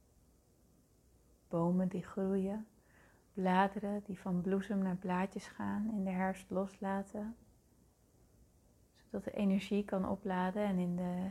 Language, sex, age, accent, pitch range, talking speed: Dutch, female, 30-49, Dutch, 185-205 Hz, 115 wpm